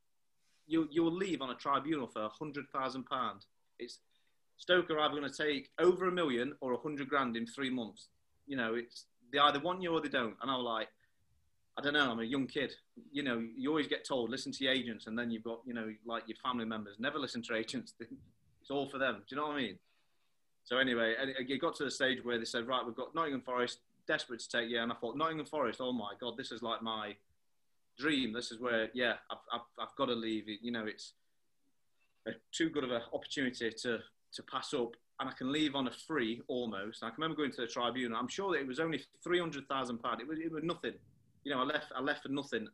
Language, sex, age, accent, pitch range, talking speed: English, male, 30-49, British, 115-140 Hz, 245 wpm